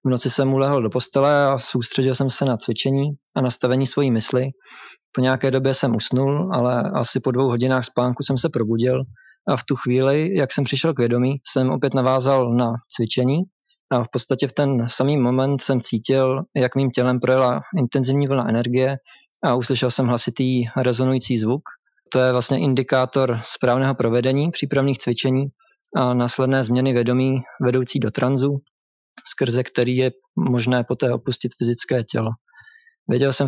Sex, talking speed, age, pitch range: male, 165 wpm, 20-39, 120-135 Hz